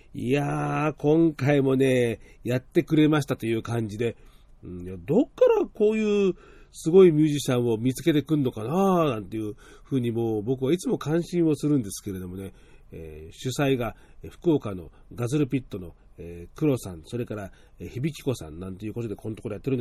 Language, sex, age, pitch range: Japanese, male, 40-59, 120-180 Hz